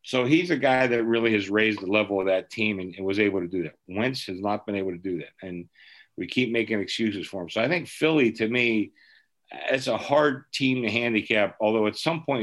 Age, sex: 50-69, male